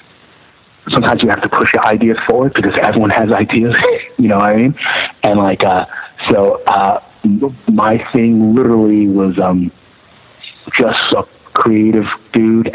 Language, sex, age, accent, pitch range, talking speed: English, male, 30-49, American, 95-110 Hz, 145 wpm